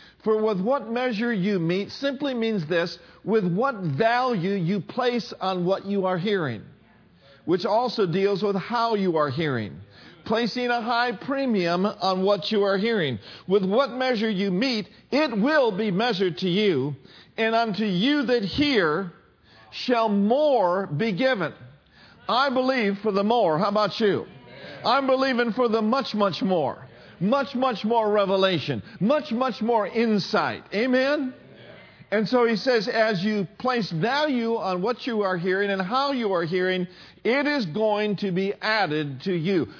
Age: 50-69